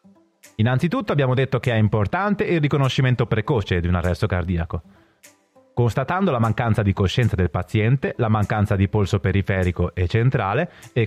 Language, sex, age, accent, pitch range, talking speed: Italian, male, 30-49, native, 105-150 Hz, 150 wpm